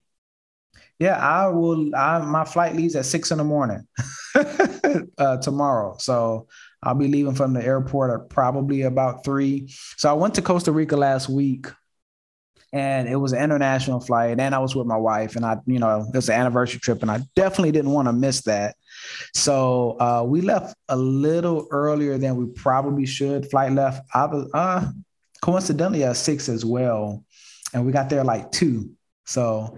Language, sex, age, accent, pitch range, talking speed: English, male, 20-39, American, 120-150 Hz, 180 wpm